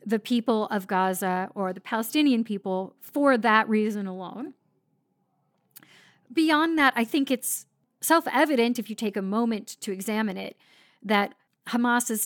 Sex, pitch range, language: female, 200-245 Hz, English